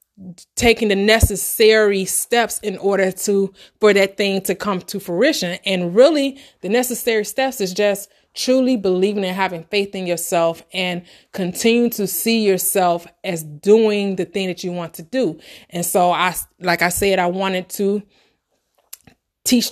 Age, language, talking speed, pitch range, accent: 30-49, English, 160 wpm, 185-210 Hz, American